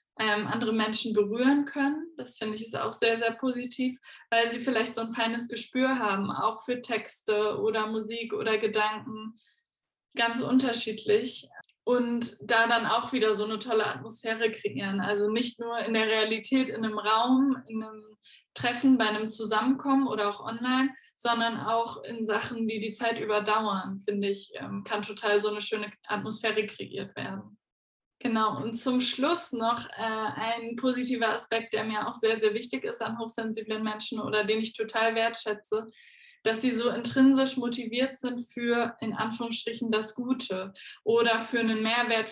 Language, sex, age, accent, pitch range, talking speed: German, female, 10-29, German, 215-240 Hz, 160 wpm